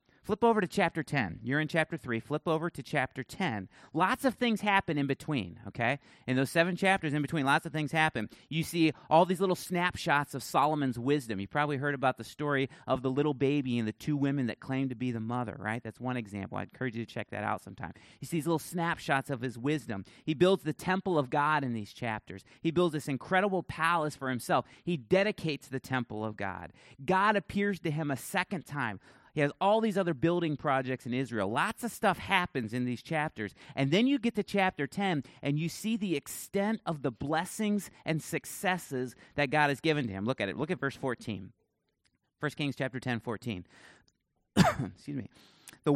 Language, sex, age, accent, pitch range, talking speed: English, male, 30-49, American, 125-175 Hz, 215 wpm